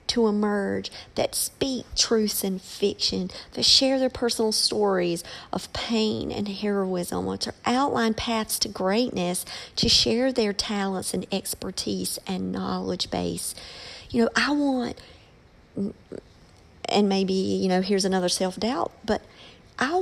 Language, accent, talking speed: English, American, 130 wpm